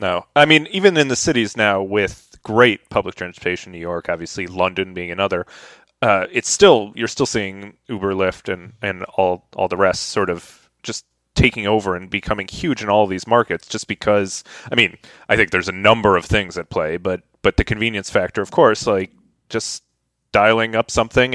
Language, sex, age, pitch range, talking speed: English, male, 30-49, 95-110 Hz, 195 wpm